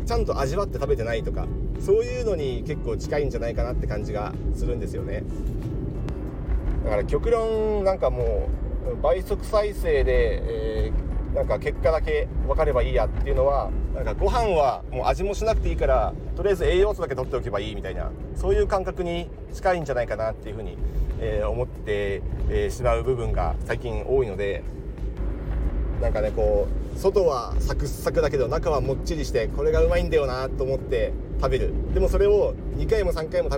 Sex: male